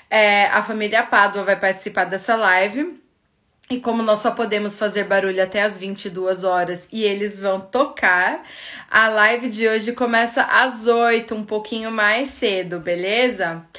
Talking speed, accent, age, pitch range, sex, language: 150 wpm, Brazilian, 20-39, 205-255 Hz, female, Portuguese